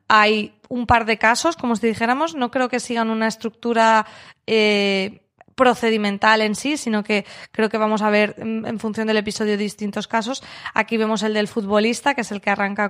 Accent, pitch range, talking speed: Spanish, 200-230 Hz, 190 wpm